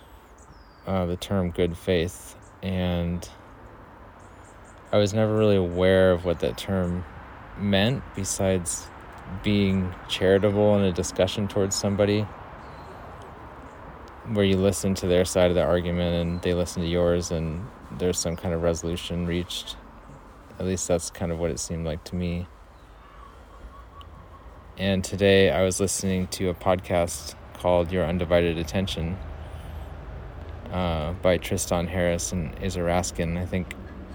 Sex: male